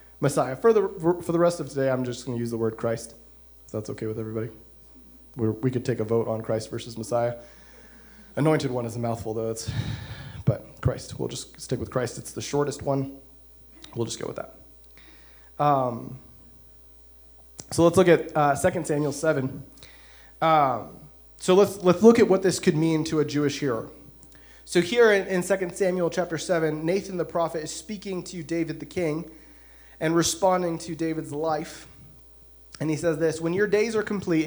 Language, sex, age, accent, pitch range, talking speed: English, male, 30-49, American, 115-160 Hz, 190 wpm